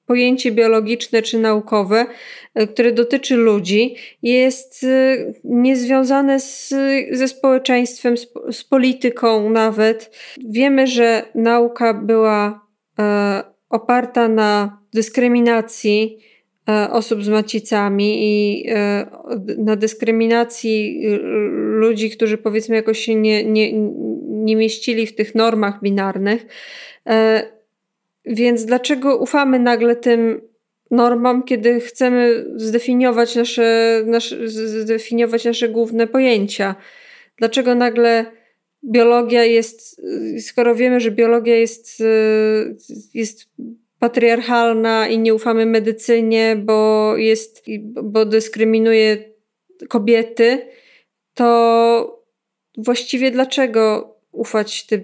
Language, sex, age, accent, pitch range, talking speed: Polish, female, 20-39, native, 220-245 Hz, 85 wpm